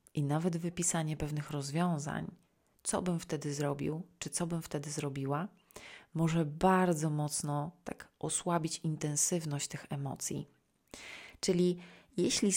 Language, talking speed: Polish, 115 wpm